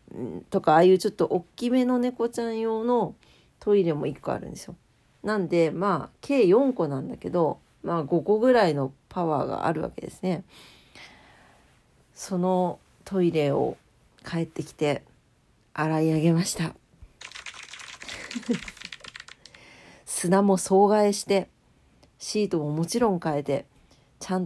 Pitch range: 160-225 Hz